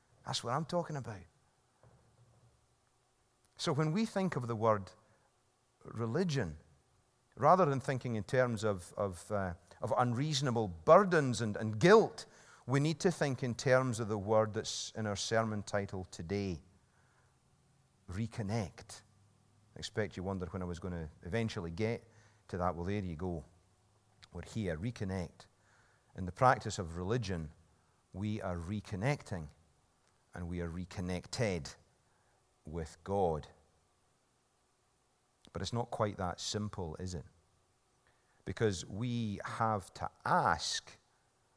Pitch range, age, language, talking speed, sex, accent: 90-120 Hz, 40-59, English, 125 wpm, male, British